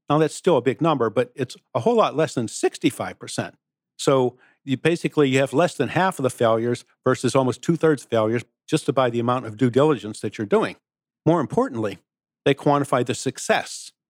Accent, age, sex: American, 50-69, male